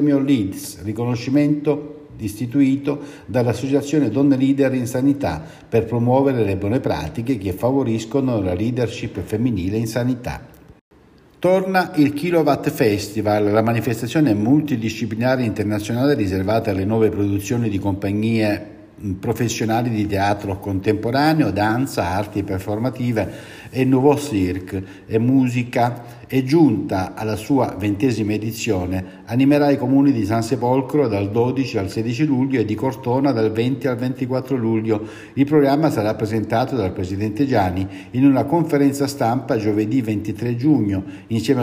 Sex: male